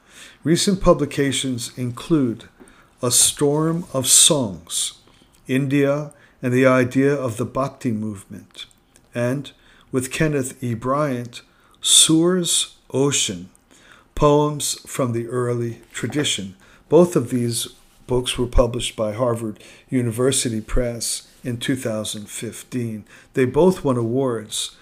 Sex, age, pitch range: male, 50-69, 115-135 Hz